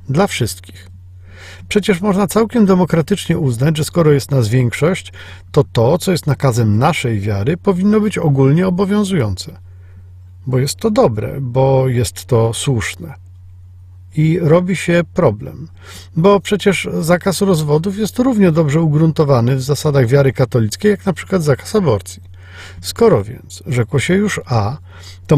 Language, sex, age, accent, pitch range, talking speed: Polish, male, 50-69, native, 100-165 Hz, 140 wpm